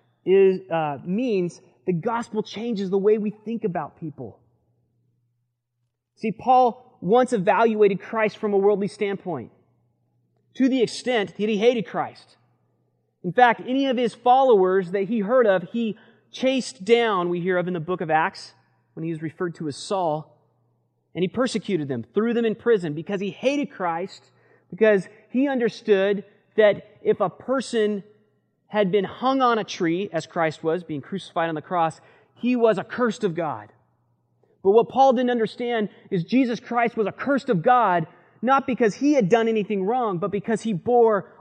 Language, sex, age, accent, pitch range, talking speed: English, male, 30-49, American, 150-220 Hz, 170 wpm